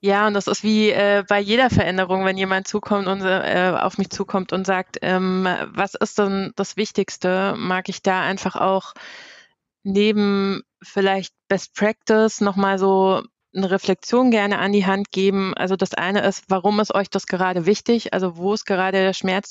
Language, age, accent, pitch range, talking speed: German, 20-39, German, 190-210 Hz, 180 wpm